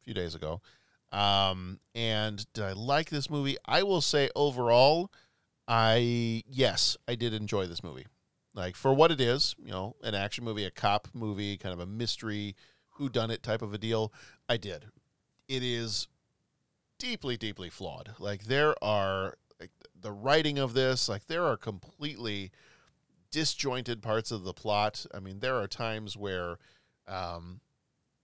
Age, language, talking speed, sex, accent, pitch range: 40-59, English, 160 wpm, male, American, 100-130 Hz